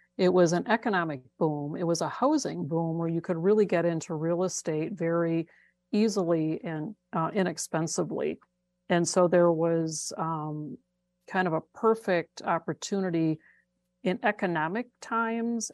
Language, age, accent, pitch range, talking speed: English, 50-69, American, 165-185 Hz, 135 wpm